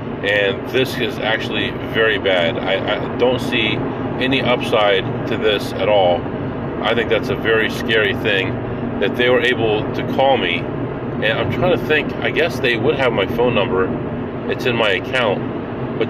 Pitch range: 115-125 Hz